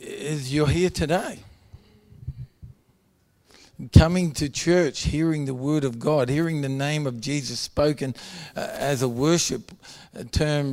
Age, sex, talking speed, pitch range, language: 50-69, male, 130 wpm, 125-155 Hz, English